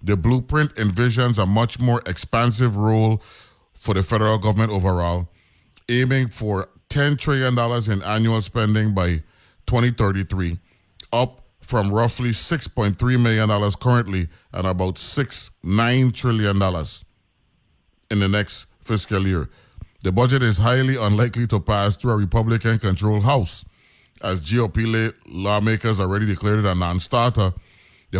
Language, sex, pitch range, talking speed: English, male, 95-120 Hz, 140 wpm